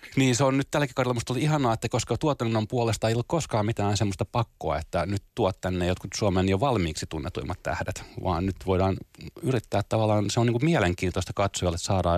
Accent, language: native, Finnish